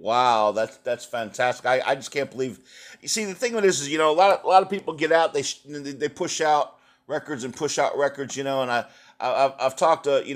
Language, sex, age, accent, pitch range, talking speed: English, male, 50-69, American, 125-165 Hz, 265 wpm